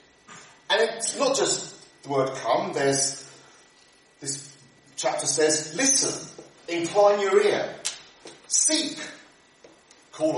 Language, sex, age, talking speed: English, male, 40-59, 100 wpm